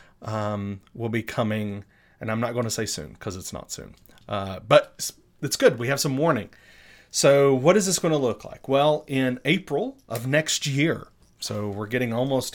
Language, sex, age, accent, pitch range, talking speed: English, male, 30-49, American, 110-140 Hz, 200 wpm